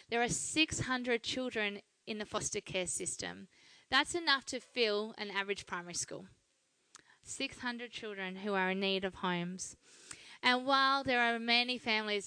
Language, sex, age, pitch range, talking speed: English, female, 20-39, 195-235 Hz, 150 wpm